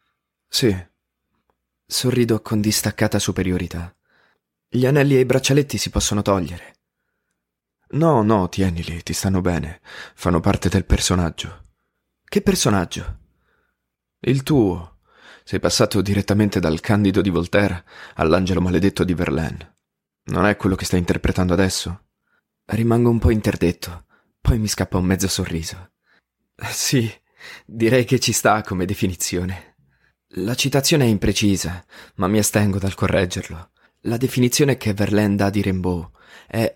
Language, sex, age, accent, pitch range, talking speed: Italian, male, 20-39, native, 90-110 Hz, 130 wpm